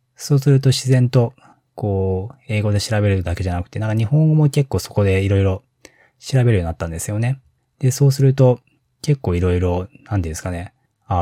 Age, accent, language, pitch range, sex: 20-39, native, Japanese, 90-120 Hz, male